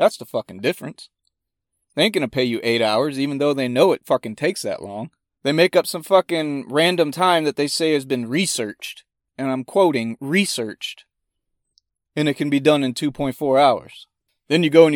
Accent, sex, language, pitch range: American, male, English, 130-170 Hz